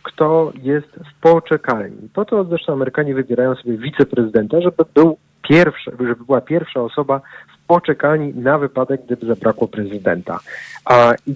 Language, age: Polish, 40-59